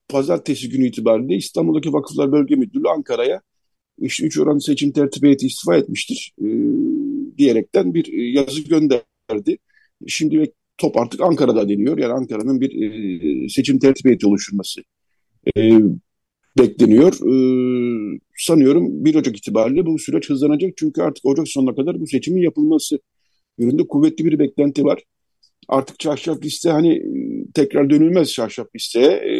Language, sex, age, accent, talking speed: Turkish, male, 50-69, native, 130 wpm